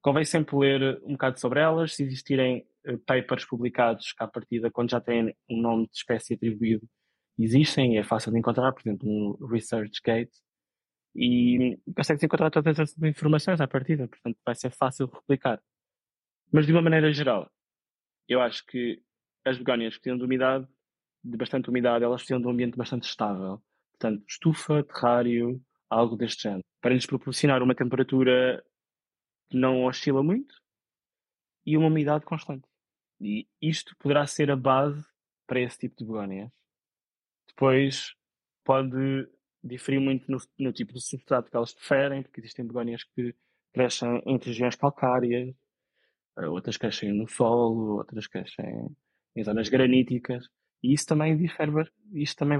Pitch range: 120-140 Hz